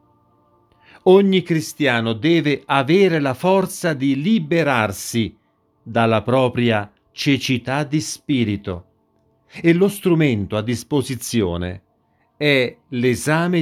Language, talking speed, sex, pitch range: Italian, 90 wpm, male, 110-150 Hz